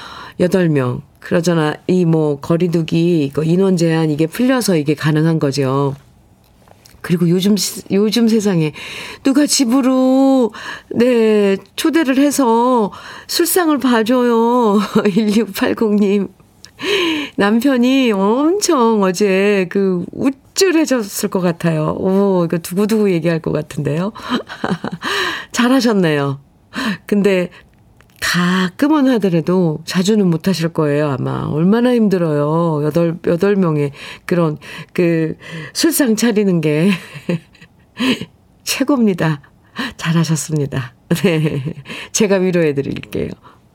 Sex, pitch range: female, 165-235 Hz